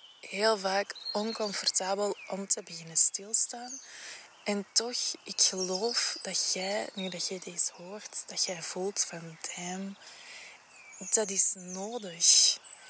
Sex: female